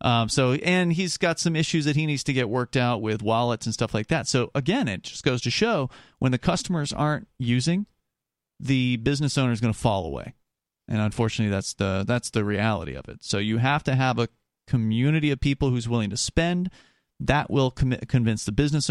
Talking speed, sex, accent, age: 215 wpm, male, American, 40-59